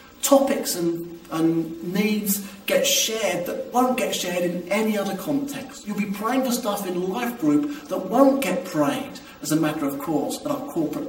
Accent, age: British, 40-59